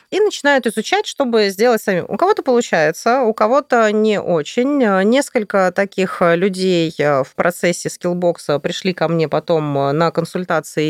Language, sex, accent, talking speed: Russian, female, native, 140 wpm